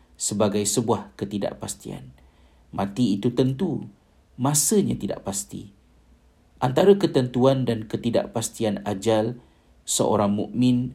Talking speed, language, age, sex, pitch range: 90 wpm, Malay, 50-69, male, 100-120 Hz